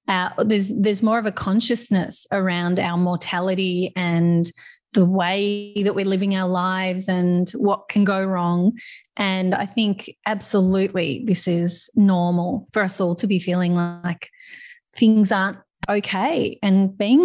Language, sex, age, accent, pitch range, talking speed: English, female, 30-49, Australian, 180-215 Hz, 145 wpm